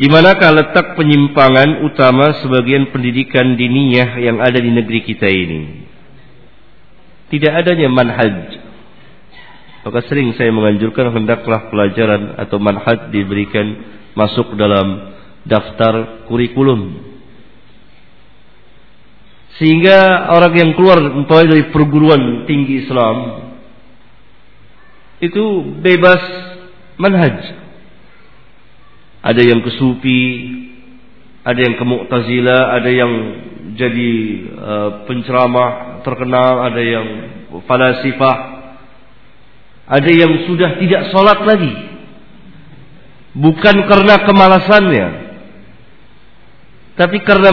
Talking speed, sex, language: 85 wpm, male, Indonesian